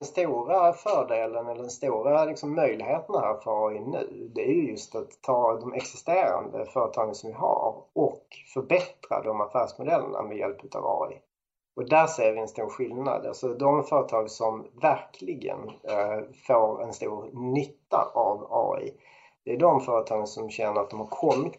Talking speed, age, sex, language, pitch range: 160 wpm, 30-49, male, English, 115-170 Hz